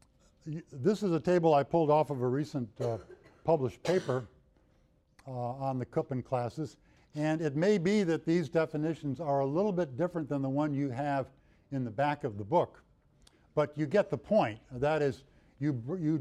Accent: American